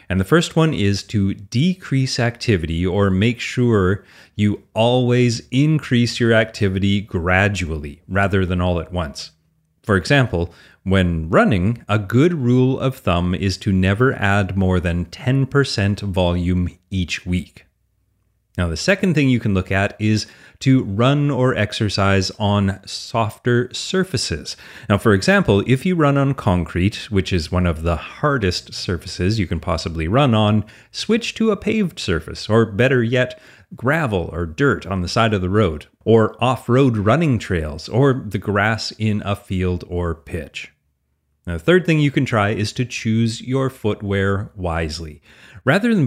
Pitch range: 90-125 Hz